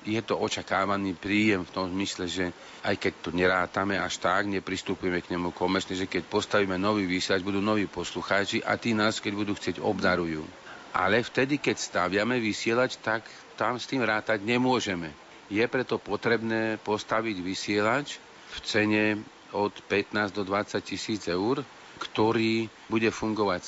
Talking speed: 150 wpm